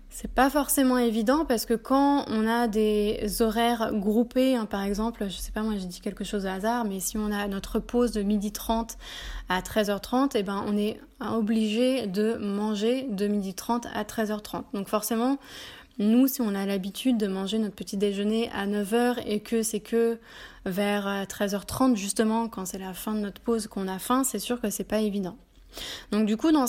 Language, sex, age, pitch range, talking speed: French, female, 20-39, 205-245 Hz, 200 wpm